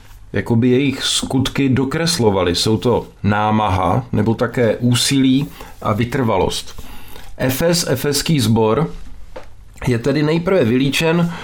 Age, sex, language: 50-69, male, Czech